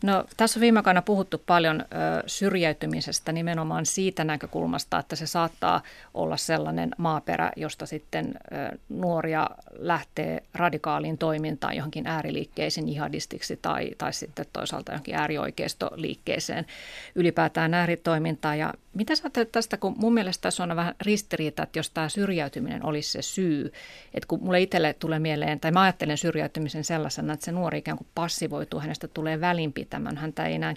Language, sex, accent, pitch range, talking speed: Finnish, female, native, 155-185 Hz, 150 wpm